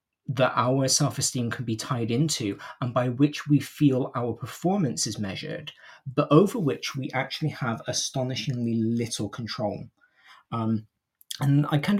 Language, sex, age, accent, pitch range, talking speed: English, male, 20-39, British, 115-150 Hz, 150 wpm